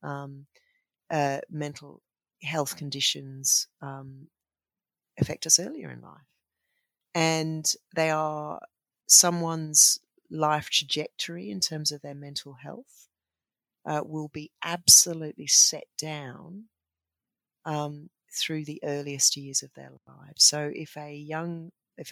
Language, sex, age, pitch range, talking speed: English, female, 40-59, 140-165 Hz, 115 wpm